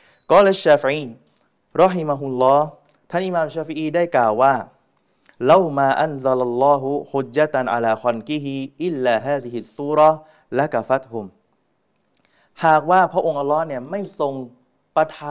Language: Thai